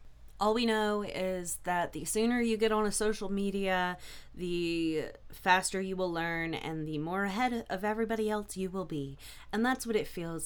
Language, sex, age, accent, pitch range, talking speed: English, female, 20-39, American, 155-190 Hz, 190 wpm